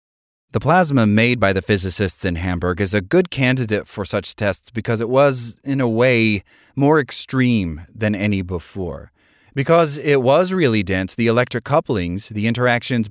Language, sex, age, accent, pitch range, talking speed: English, male, 30-49, American, 100-130 Hz, 165 wpm